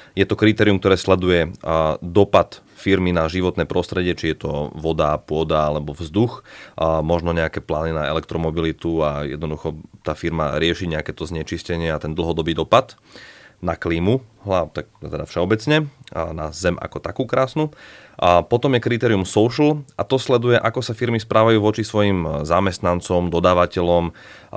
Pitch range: 80-100 Hz